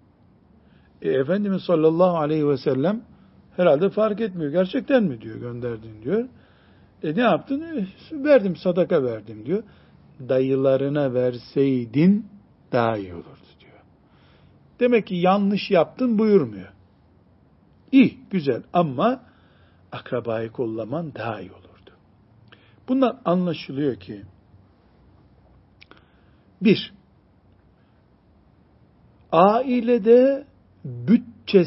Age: 60-79